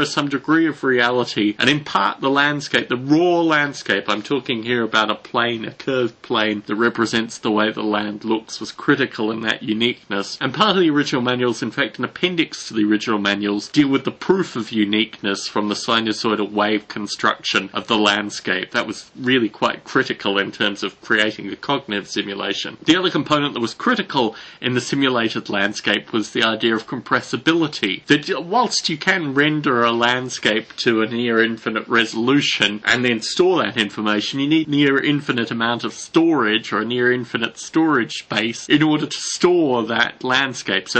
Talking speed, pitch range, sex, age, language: 180 wpm, 110-145 Hz, male, 30-49, English